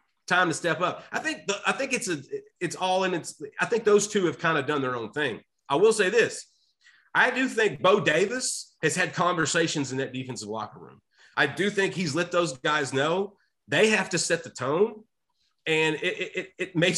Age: 30-49